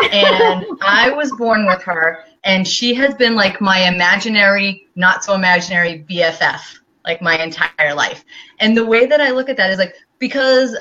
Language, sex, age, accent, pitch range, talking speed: English, female, 30-49, American, 190-255 Hz, 165 wpm